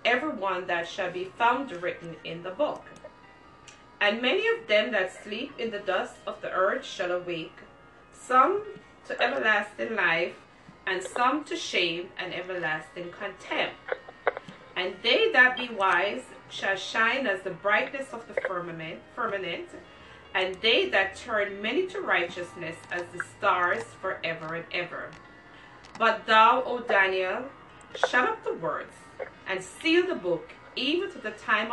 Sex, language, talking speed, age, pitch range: female, English, 150 wpm, 30-49, 180-265 Hz